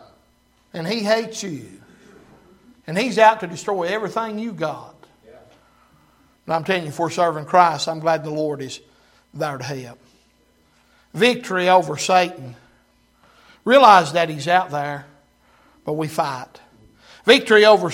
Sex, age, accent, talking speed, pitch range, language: male, 60-79, American, 135 wpm, 175-235 Hz, English